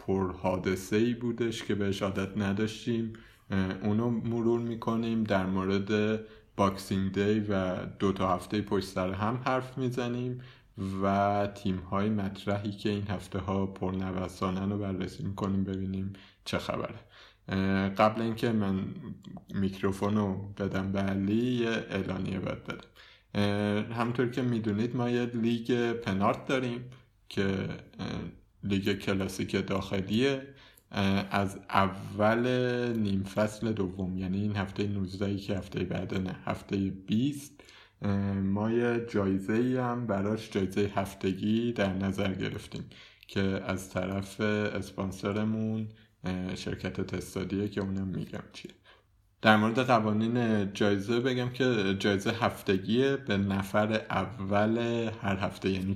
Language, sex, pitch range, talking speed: Persian, male, 95-110 Hz, 120 wpm